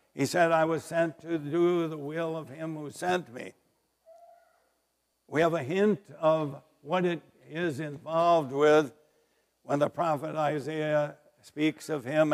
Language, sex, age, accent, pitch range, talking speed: English, male, 60-79, American, 145-165 Hz, 150 wpm